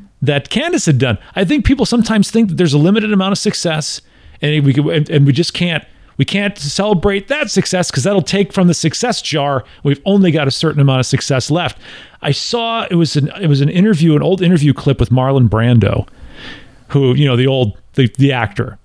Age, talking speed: 40-59, 215 wpm